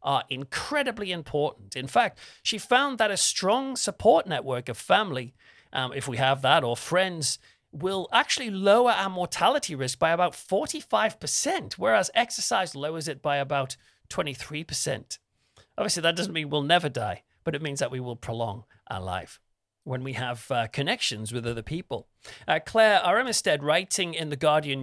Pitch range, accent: 120-170 Hz, British